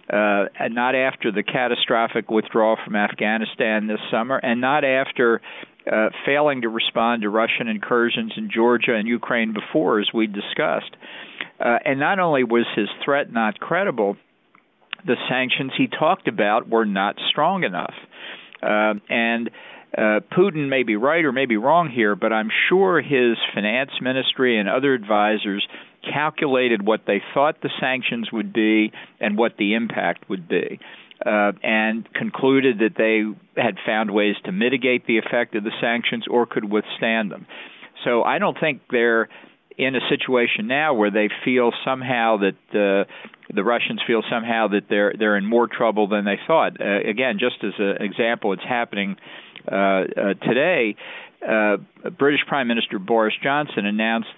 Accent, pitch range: American, 105-125 Hz